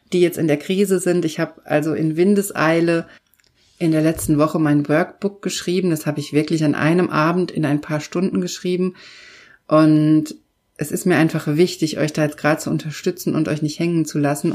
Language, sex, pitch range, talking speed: German, female, 155-180 Hz, 200 wpm